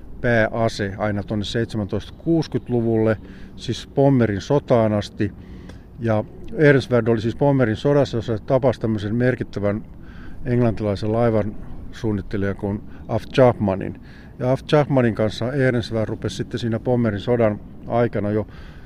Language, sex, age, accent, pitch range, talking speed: Finnish, male, 50-69, native, 105-130 Hz, 110 wpm